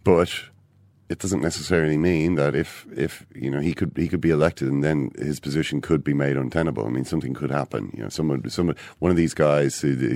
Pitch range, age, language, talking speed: 70-105 Hz, 40-59, English, 230 wpm